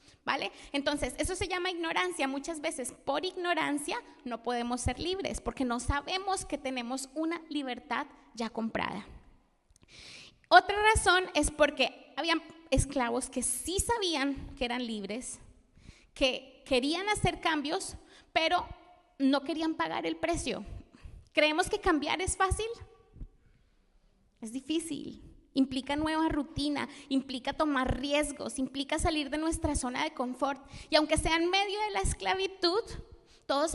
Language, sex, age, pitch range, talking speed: Spanish, female, 30-49, 260-330 Hz, 130 wpm